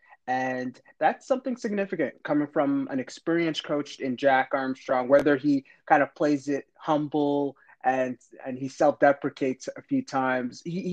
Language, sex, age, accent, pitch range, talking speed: English, male, 30-49, American, 135-180 Hz, 150 wpm